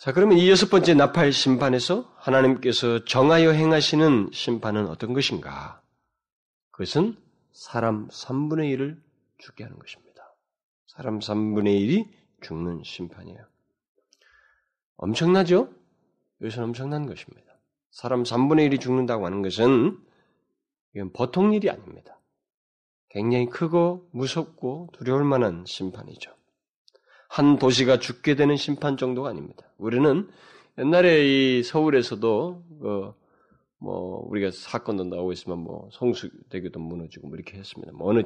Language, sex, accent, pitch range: Korean, male, native, 100-145 Hz